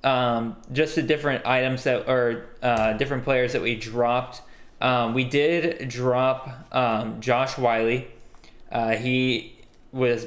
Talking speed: 135 wpm